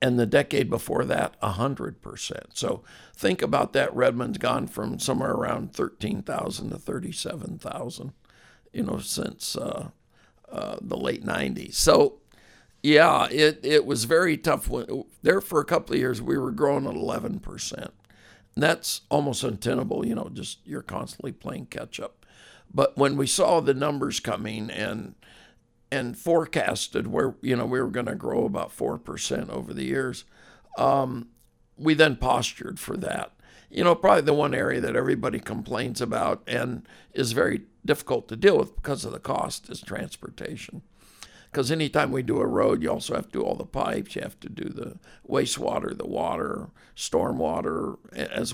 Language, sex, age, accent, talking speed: English, male, 60-79, American, 165 wpm